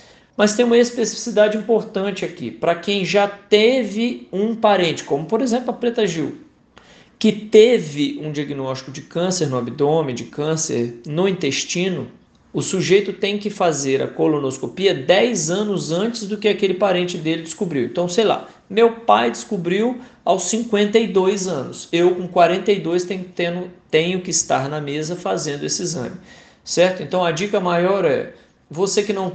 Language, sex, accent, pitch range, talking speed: Portuguese, male, Brazilian, 150-200 Hz, 155 wpm